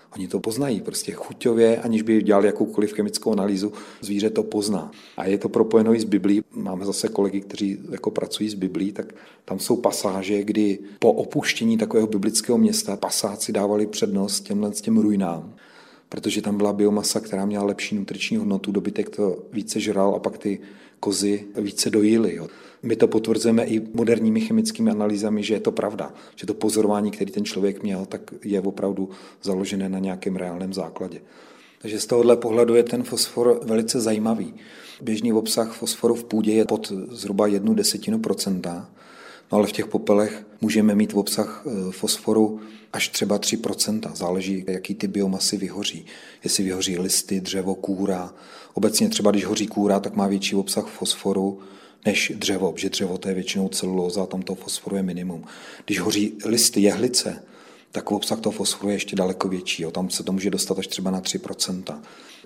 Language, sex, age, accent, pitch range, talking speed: Czech, male, 40-59, native, 95-110 Hz, 175 wpm